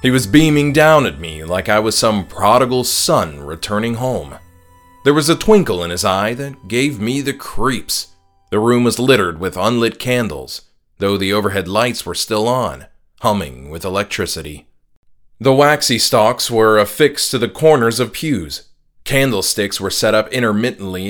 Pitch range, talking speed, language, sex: 100-140 Hz, 165 wpm, English, male